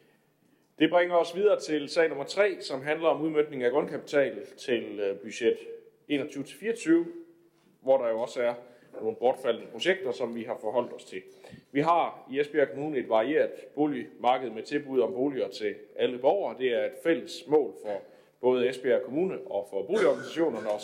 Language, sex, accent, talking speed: Danish, male, native, 170 wpm